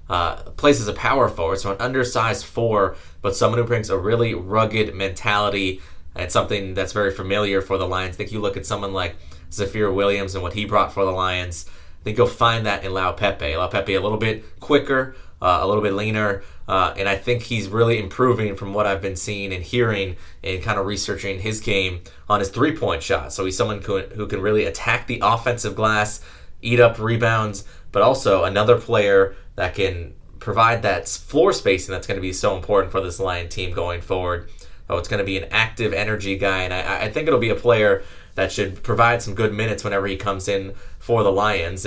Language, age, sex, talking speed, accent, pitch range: English, 20-39, male, 215 wpm, American, 95-110 Hz